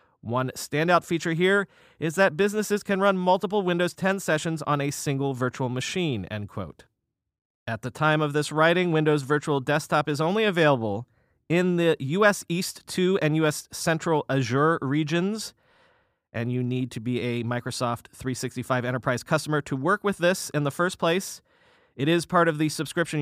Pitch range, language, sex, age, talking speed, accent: 130-180 Hz, English, male, 30-49, 170 wpm, American